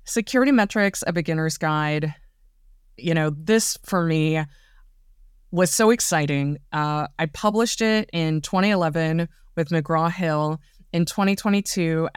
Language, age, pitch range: English, 20-39, 155-205 Hz